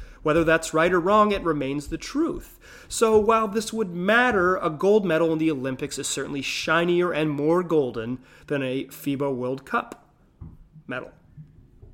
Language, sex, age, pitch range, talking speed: English, male, 30-49, 135-185 Hz, 160 wpm